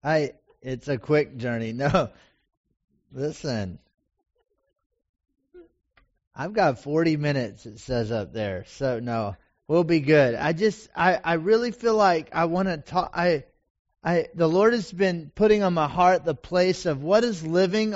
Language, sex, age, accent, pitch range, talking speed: English, male, 30-49, American, 135-180 Hz, 155 wpm